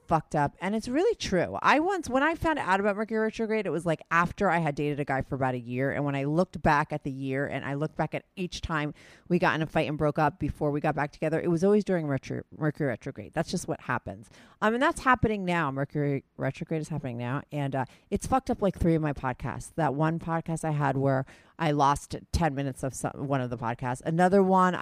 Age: 30-49